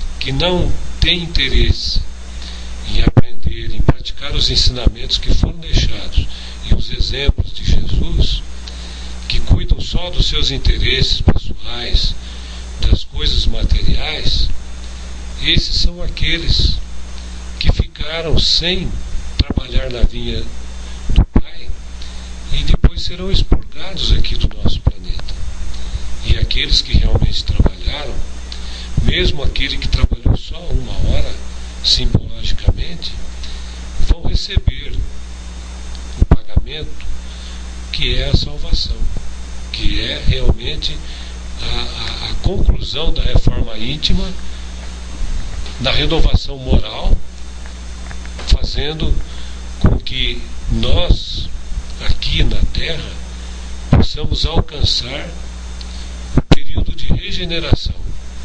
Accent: Brazilian